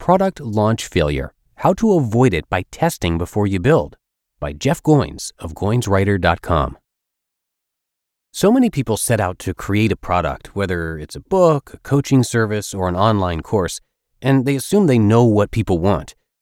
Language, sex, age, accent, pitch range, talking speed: English, male, 30-49, American, 90-135 Hz, 165 wpm